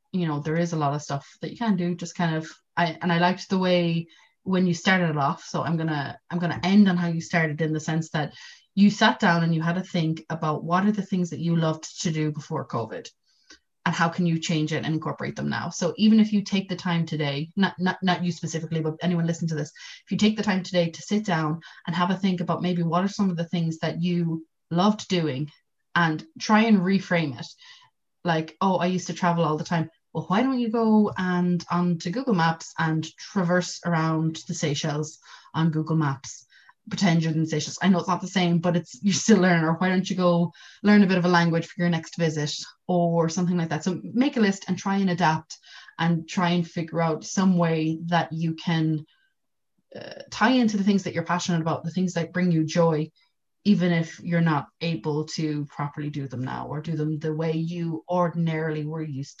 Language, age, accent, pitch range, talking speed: English, 20-39, Irish, 160-185 Hz, 235 wpm